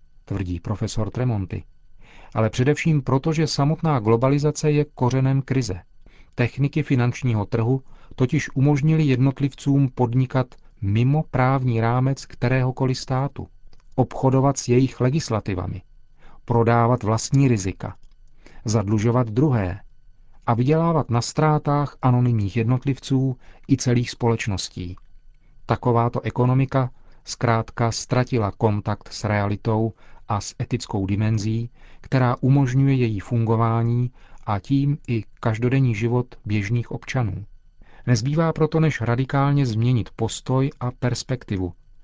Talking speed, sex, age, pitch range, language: 105 wpm, male, 40-59, 110-130 Hz, Czech